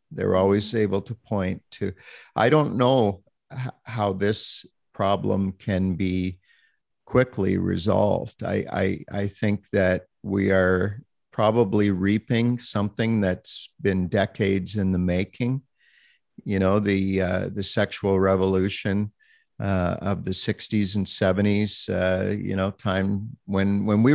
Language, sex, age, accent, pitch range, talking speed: English, male, 50-69, American, 95-110 Hz, 130 wpm